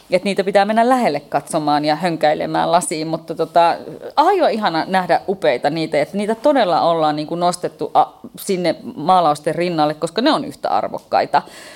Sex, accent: female, native